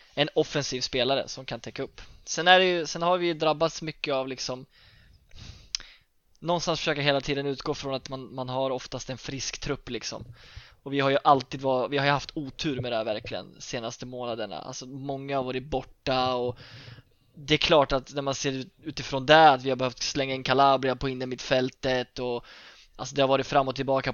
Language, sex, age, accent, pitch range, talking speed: Swedish, male, 20-39, native, 125-140 Hz, 205 wpm